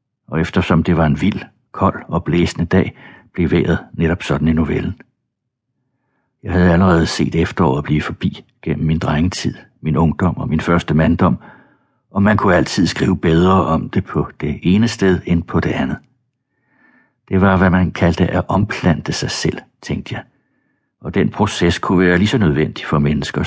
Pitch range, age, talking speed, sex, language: 80-115 Hz, 60-79, 175 wpm, male, Danish